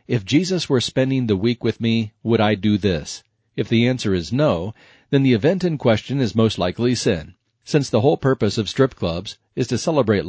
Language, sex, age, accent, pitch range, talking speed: English, male, 40-59, American, 105-130 Hz, 210 wpm